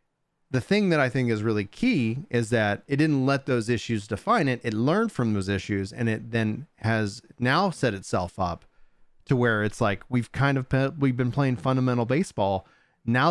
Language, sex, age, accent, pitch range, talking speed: English, male, 30-49, American, 110-140 Hz, 195 wpm